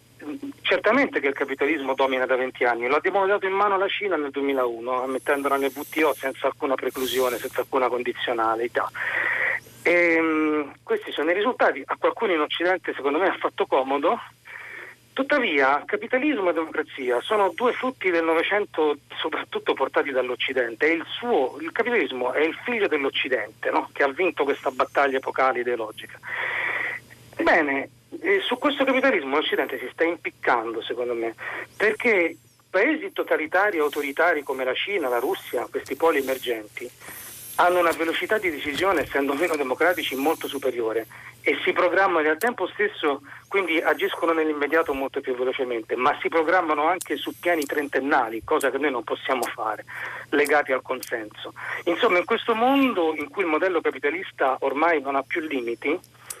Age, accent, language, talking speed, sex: 40-59, native, Italian, 150 wpm, male